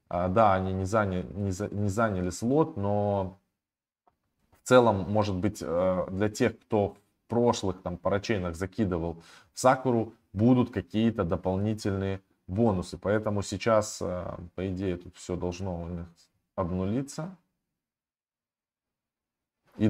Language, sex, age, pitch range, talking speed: Russian, male, 20-39, 90-110 Hz, 110 wpm